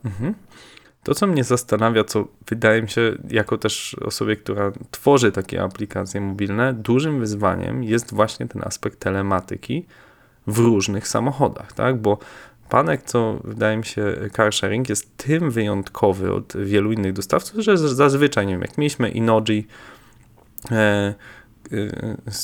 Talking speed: 130 wpm